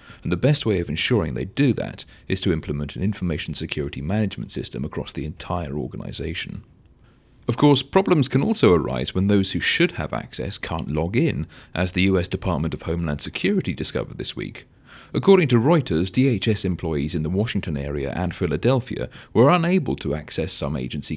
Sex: male